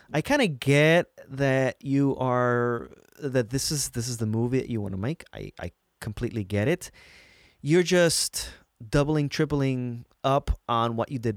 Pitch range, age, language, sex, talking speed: 110-155 Hz, 30-49, English, male, 175 wpm